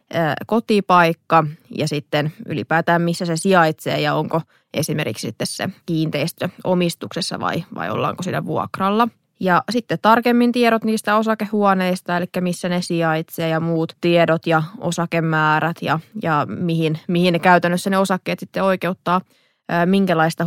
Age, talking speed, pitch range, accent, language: 20-39, 130 wpm, 160-190 Hz, native, Finnish